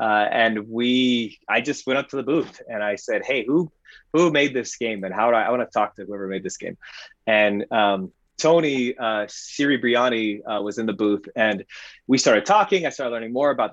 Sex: male